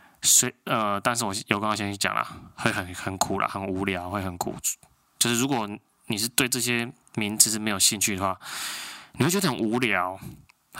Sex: male